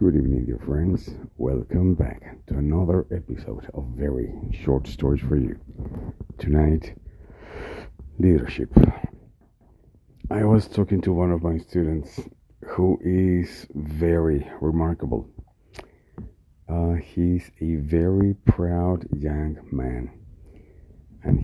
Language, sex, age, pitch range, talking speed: English, male, 50-69, 75-85 Hz, 105 wpm